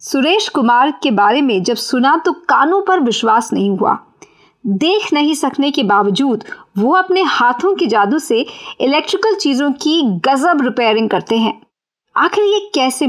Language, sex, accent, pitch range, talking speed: Hindi, female, native, 230-335 Hz, 155 wpm